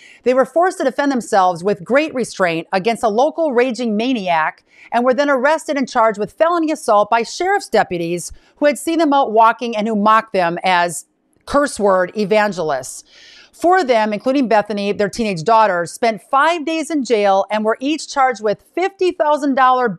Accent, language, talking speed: American, English, 175 wpm